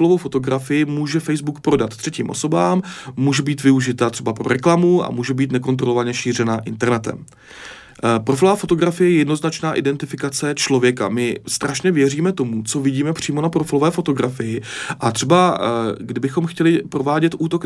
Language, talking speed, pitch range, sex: Czech, 135 wpm, 125-160 Hz, male